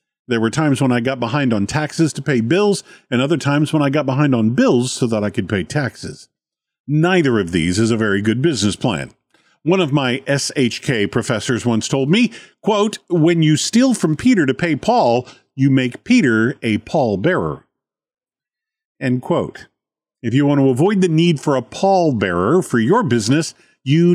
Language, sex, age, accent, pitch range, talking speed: English, male, 50-69, American, 125-175 Hz, 190 wpm